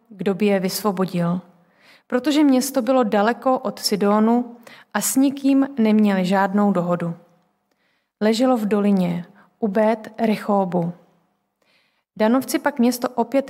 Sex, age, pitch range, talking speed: female, 30-49, 200-235 Hz, 110 wpm